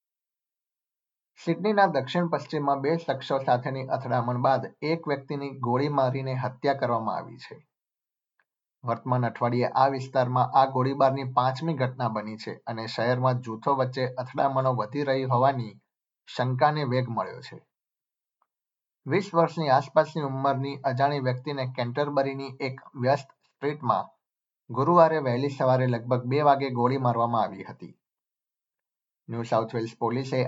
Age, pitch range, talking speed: 50-69, 125-140 Hz, 100 wpm